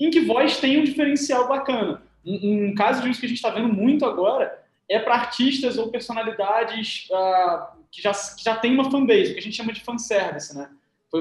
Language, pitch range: Portuguese, 200-265 Hz